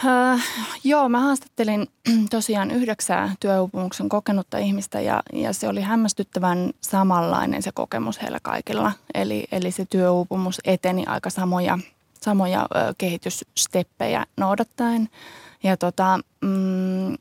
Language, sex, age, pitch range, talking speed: Finnish, female, 20-39, 180-220 Hz, 100 wpm